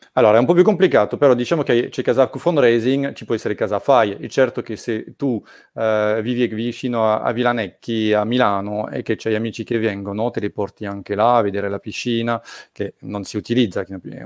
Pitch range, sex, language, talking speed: 105-125 Hz, male, Italian, 210 wpm